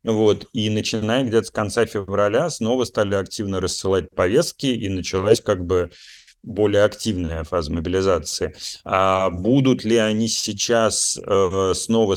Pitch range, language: 90-110 Hz, Russian